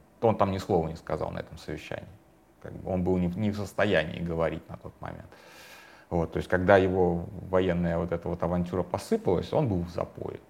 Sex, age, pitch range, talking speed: male, 30-49, 85-95 Hz, 205 wpm